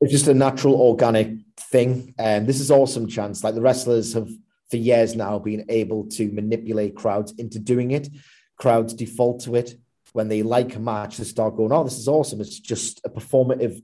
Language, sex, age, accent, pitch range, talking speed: English, male, 30-49, British, 105-120 Hz, 200 wpm